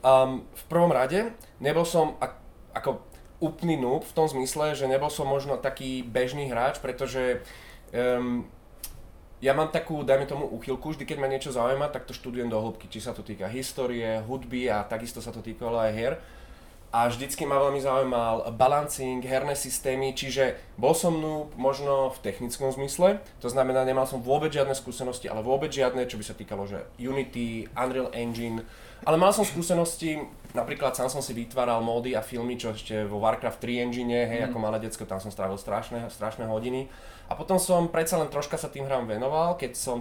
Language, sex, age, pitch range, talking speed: Czech, male, 20-39, 115-140 Hz, 185 wpm